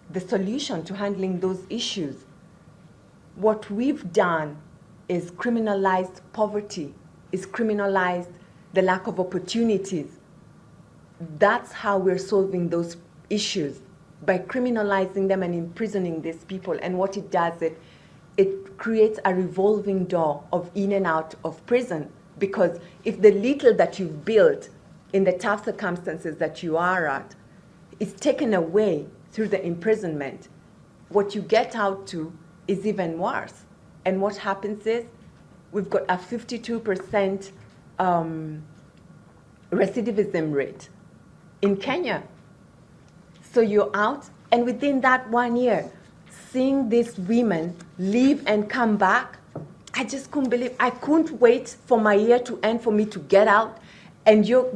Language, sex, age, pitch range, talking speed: English, female, 30-49, 175-220 Hz, 135 wpm